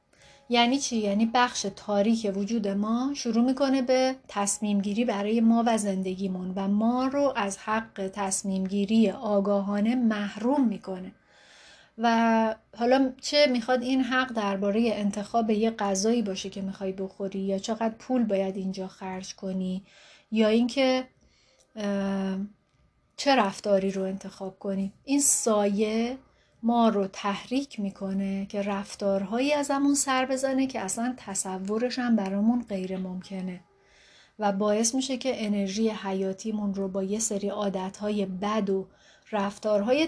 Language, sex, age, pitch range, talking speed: Persian, female, 30-49, 195-235 Hz, 125 wpm